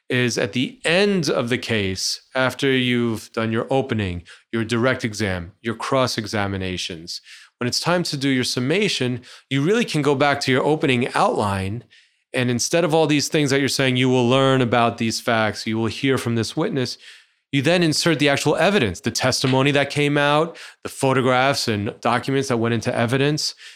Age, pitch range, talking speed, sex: 30-49, 110-135 Hz, 185 wpm, male